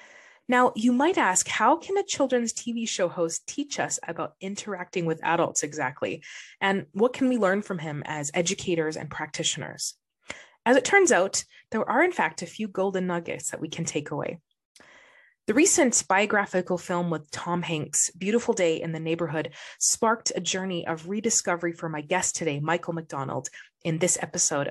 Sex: female